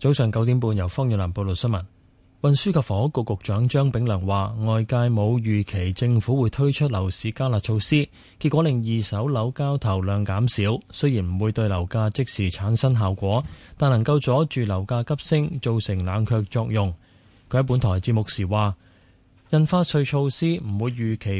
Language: Chinese